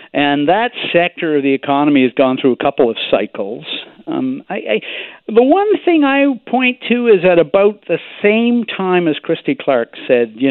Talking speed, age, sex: 190 wpm, 60-79, male